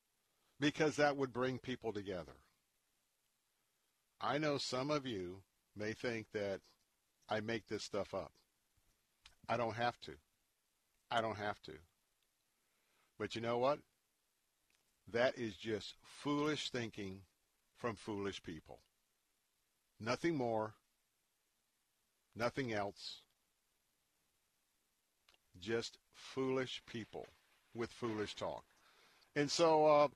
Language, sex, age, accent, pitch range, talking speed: English, male, 50-69, American, 110-130 Hz, 105 wpm